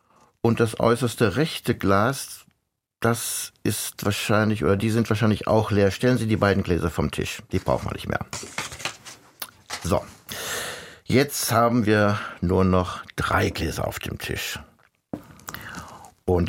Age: 60-79